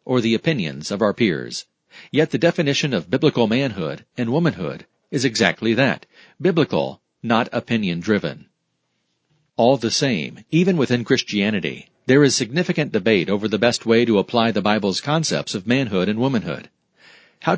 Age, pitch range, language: 40-59, 110-150 Hz, English